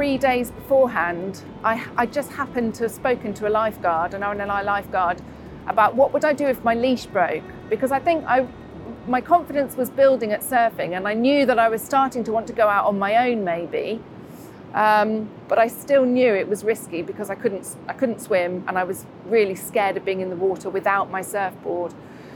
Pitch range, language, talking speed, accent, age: 205-265 Hz, English, 205 wpm, British, 40-59